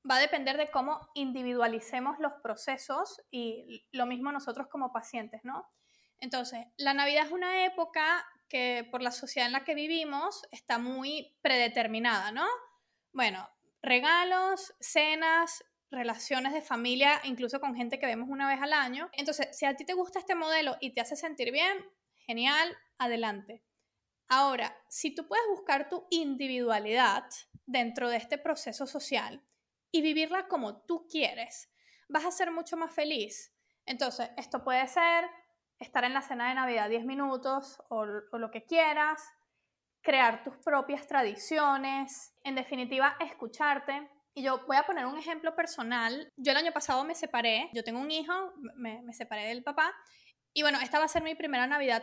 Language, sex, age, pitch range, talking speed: Spanish, female, 20-39, 250-315 Hz, 165 wpm